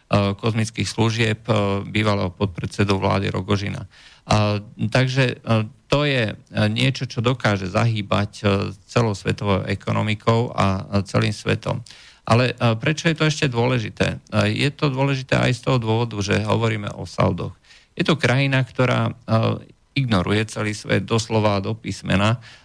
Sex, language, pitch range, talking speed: male, Slovak, 100-115 Hz, 130 wpm